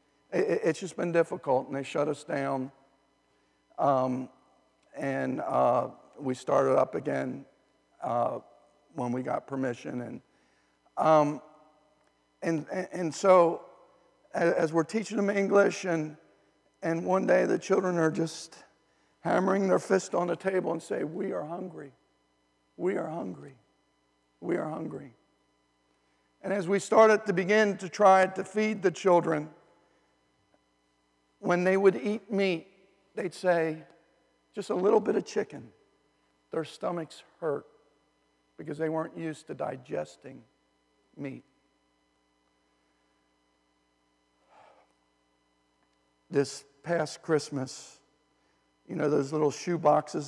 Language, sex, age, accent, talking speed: English, male, 50-69, American, 120 wpm